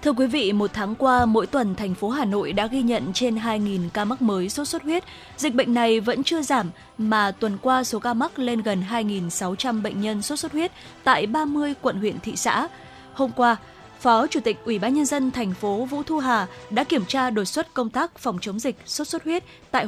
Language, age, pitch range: Vietnamese, 20-39, 210-275 Hz